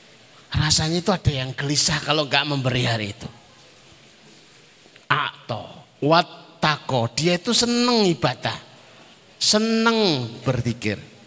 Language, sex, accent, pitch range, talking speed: Indonesian, male, native, 115-170 Hz, 100 wpm